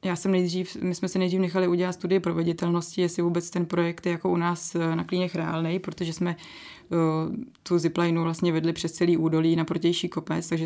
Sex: female